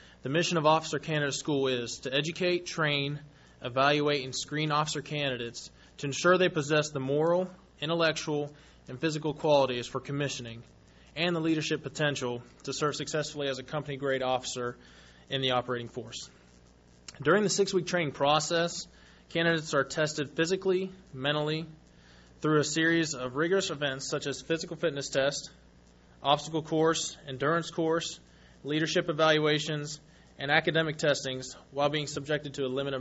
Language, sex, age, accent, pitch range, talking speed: English, male, 20-39, American, 130-160 Hz, 145 wpm